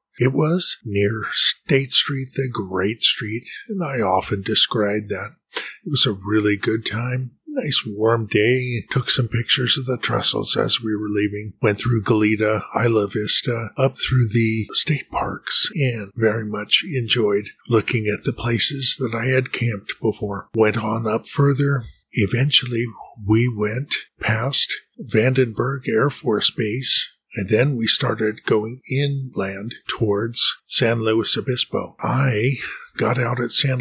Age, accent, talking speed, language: 50-69, American, 145 wpm, English